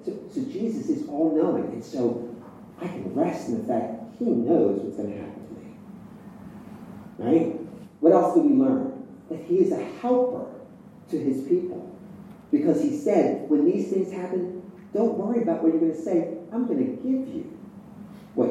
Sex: male